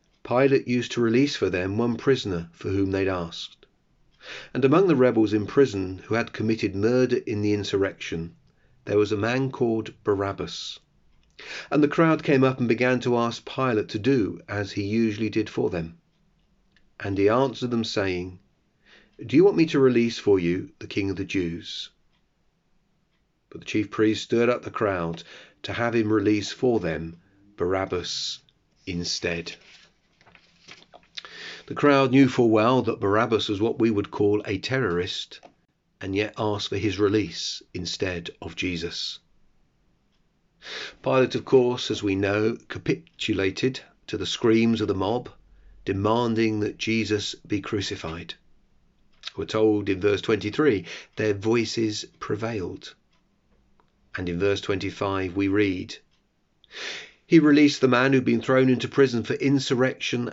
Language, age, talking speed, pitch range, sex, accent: English, 40-59, 150 wpm, 100-125 Hz, male, British